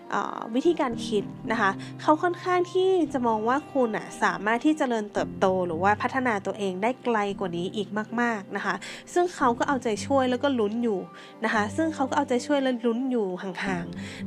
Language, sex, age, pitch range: Thai, female, 20-39, 205-270 Hz